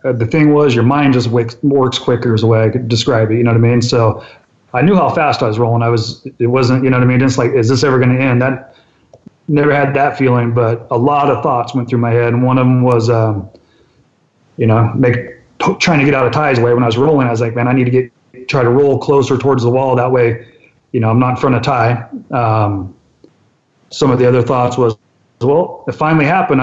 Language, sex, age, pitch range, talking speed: English, male, 30-49, 120-135 Hz, 265 wpm